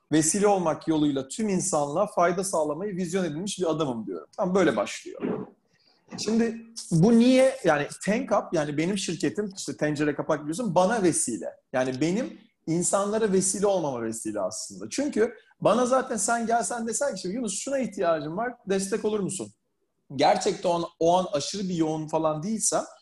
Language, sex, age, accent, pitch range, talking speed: Turkish, male, 40-59, native, 155-220 Hz, 150 wpm